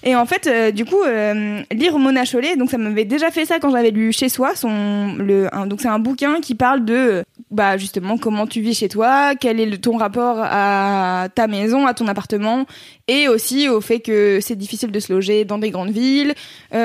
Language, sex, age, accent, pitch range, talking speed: French, female, 20-39, French, 215-260 Hz, 225 wpm